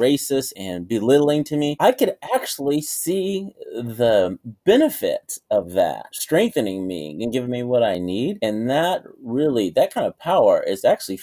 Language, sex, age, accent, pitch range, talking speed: English, male, 30-49, American, 100-140 Hz, 160 wpm